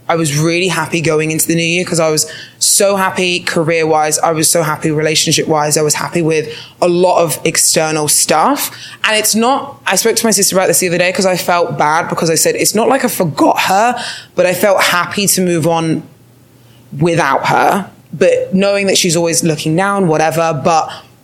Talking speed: 205 wpm